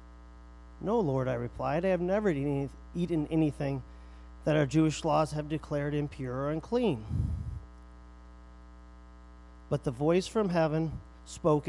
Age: 40-59